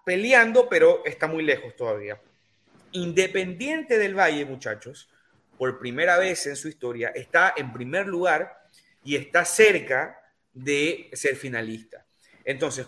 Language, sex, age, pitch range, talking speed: Spanish, male, 30-49, 140-200 Hz, 125 wpm